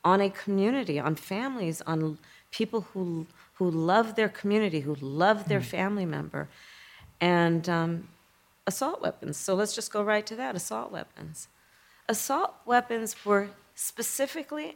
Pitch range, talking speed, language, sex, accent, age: 185-235 Hz, 140 wpm, English, female, American, 40-59